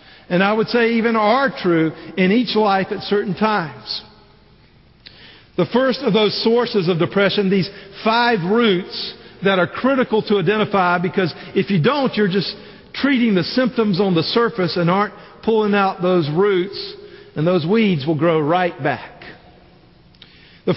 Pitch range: 195-245 Hz